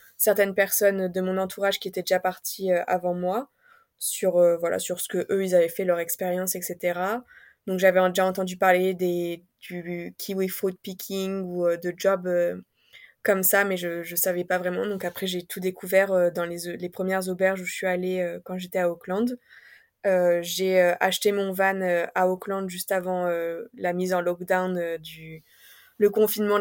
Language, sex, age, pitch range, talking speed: French, female, 20-39, 180-200 Hz, 195 wpm